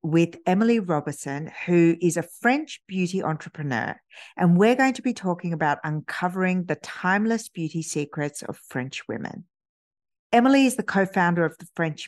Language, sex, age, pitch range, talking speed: English, female, 50-69, 150-185 Hz, 160 wpm